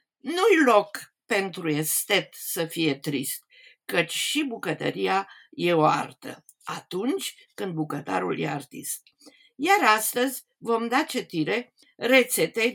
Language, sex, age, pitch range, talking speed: Romanian, female, 50-69, 185-290 Hz, 115 wpm